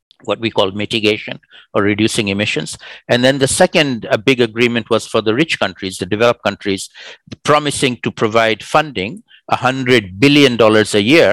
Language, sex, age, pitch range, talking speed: English, male, 60-79, 110-140 Hz, 155 wpm